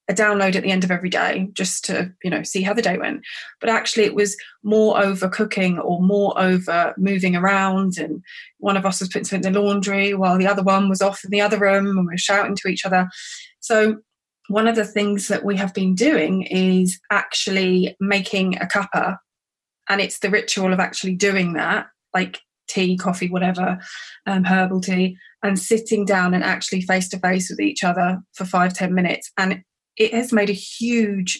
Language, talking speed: English, 205 wpm